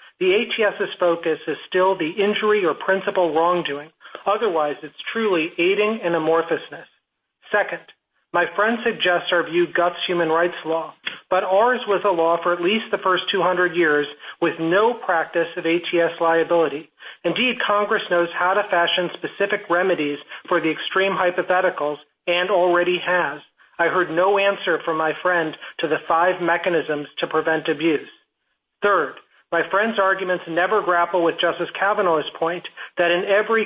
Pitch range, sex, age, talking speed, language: 165-195 Hz, male, 40-59, 155 wpm, English